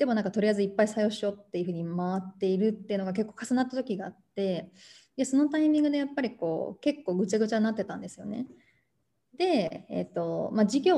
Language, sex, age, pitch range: Japanese, female, 20-39, 195-240 Hz